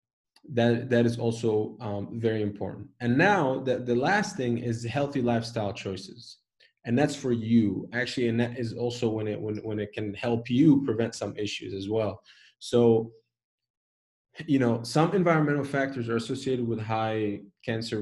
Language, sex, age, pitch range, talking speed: English, male, 20-39, 105-125 Hz, 165 wpm